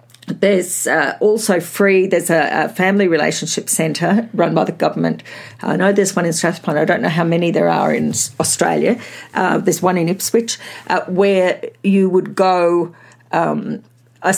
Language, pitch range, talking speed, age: English, 165-205 Hz, 170 wpm, 50-69